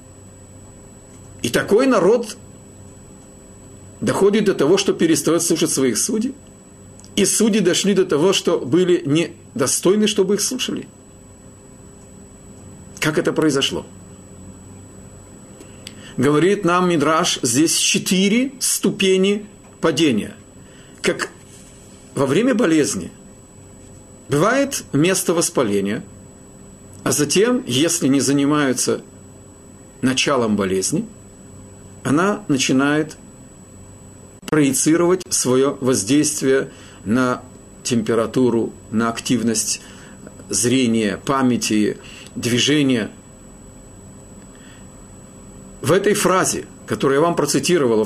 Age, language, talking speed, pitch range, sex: 50-69, Russian, 80 wpm, 100-165 Hz, male